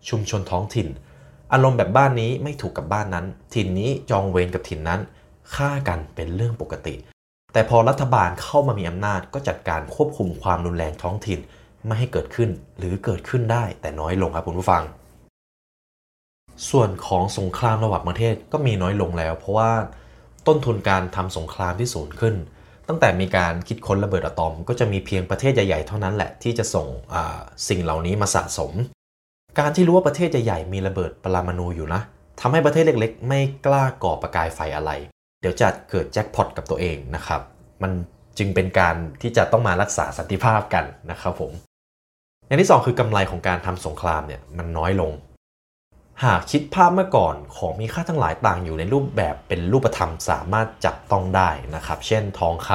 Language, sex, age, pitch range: Thai, male, 20-39, 80-115 Hz